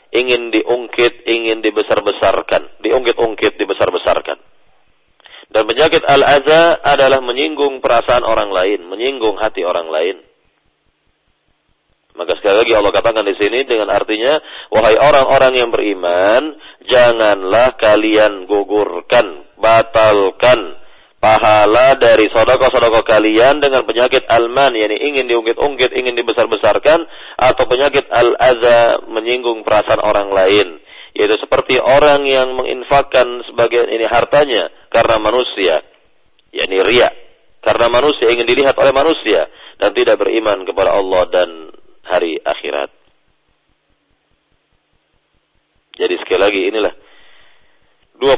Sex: male